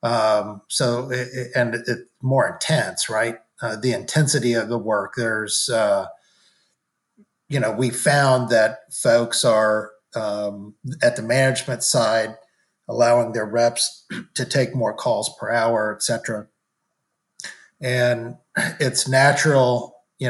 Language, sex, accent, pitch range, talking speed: English, male, American, 115-135 Hz, 135 wpm